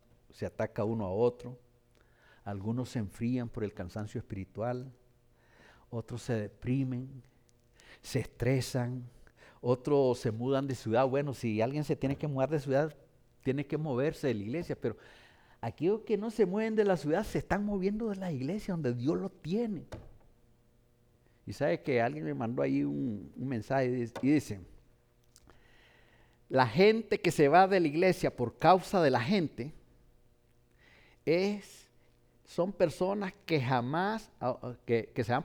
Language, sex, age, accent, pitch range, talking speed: English, male, 50-69, Mexican, 120-160 Hz, 150 wpm